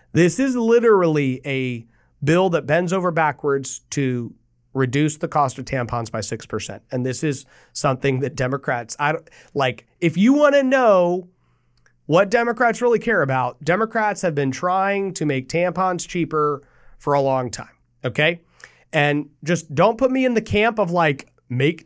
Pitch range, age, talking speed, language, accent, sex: 135-175 Hz, 30-49, 160 wpm, English, American, male